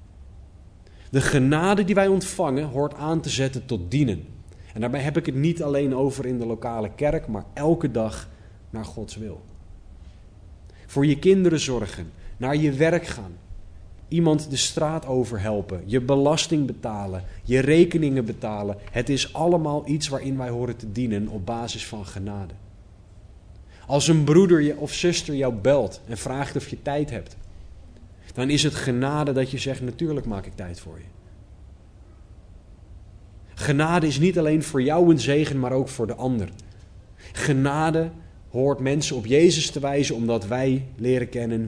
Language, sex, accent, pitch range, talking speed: Dutch, male, Dutch, 95-140 Hz, 160 wpm